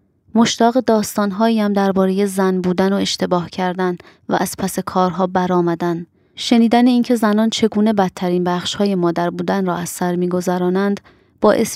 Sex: female